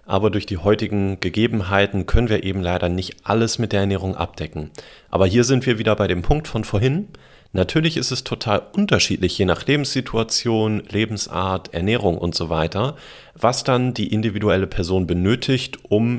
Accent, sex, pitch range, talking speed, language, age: German, male, 95-115 Hz, 165 wpm, German, 40-59